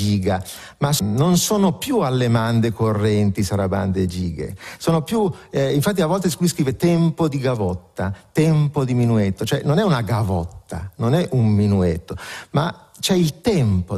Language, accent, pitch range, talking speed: Italian, native, 100-150 Hz, 160 wpm